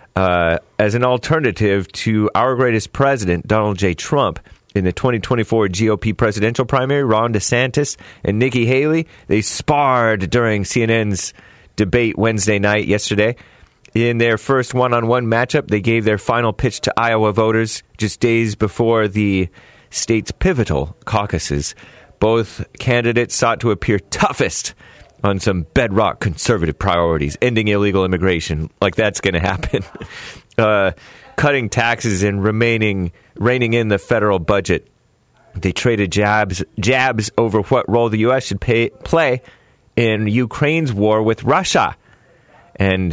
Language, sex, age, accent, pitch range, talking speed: English, male, 30-49, American, 100-120 Hz, 135 wpm